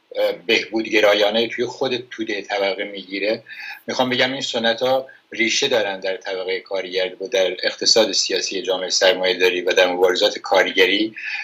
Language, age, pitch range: Persian, 60-79, 110-130 Hz